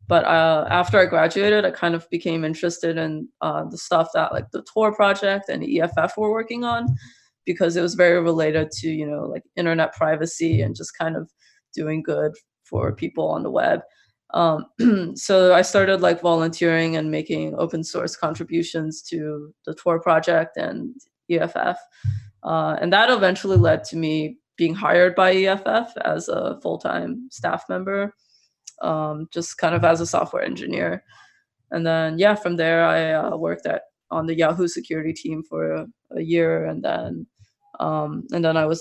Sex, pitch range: female, 160-190 Hz